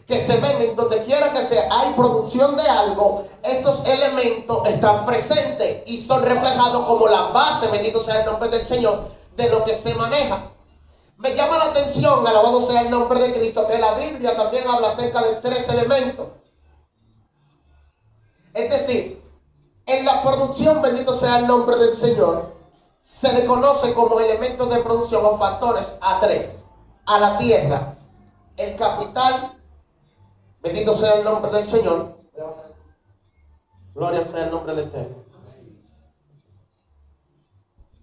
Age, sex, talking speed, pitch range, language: 30-49, male, 145 wpm, 145-240 Hz, Spanish